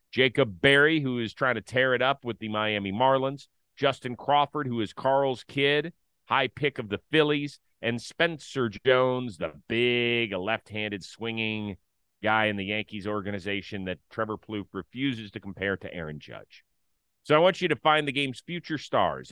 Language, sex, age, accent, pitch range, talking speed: English, male, 40-59, American, 105-160 Hz, 170 wpm